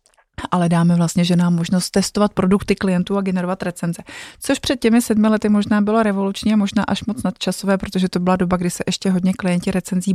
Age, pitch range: 30-49, 175-195 Hz